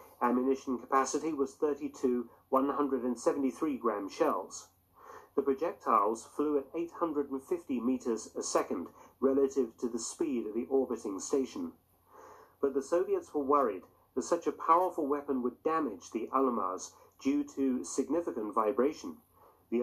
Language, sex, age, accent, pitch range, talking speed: English, male, 40-59, British, 130-155 Hz, 150 wpm